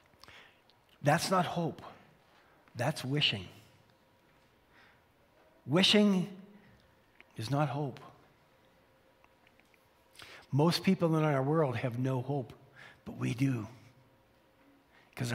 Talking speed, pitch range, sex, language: 80 wpm, 135-200 Hz, male, English